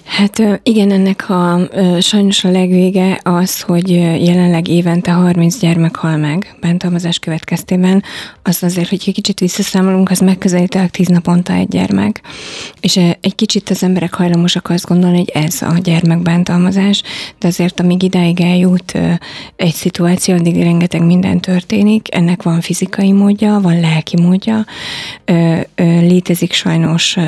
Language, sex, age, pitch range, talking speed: Hungarian, female, 30-49, 170-190 Hz, 130 wpm